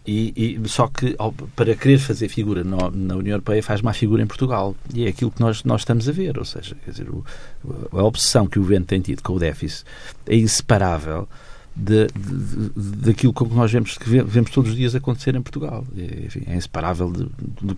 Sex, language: male, Portuguese